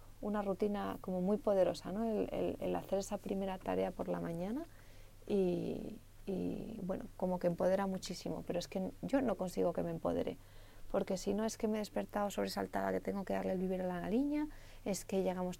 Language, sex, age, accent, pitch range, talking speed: Spanish, female, 30-49, Spanish, 170-205 Hz, 195 wpm